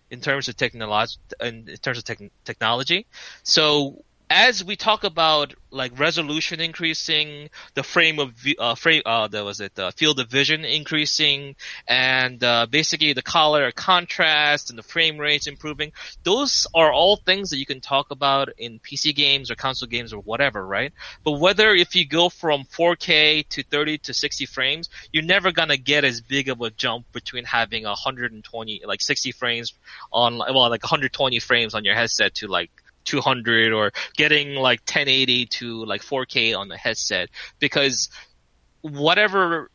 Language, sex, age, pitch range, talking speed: English, male, 20-39, 115-150 Hz, 170 wpm